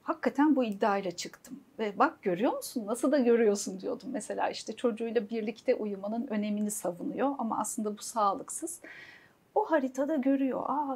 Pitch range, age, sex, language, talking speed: 205-275 Hz, 40-59, female, Turkish, 150 wpm